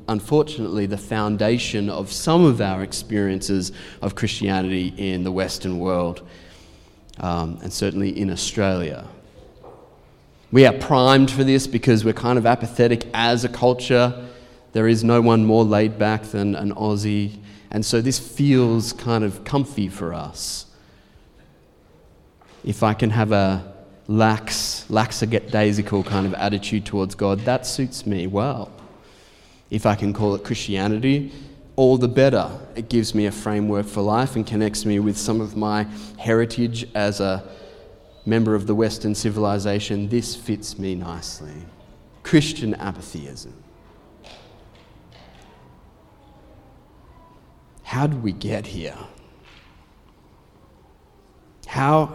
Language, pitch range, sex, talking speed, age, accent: English, 100-120 Hz, male, 125 wpm, 30-49, Australian